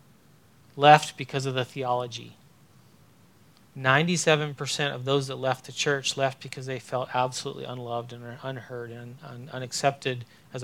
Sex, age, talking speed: male, 40-59, 130 wpm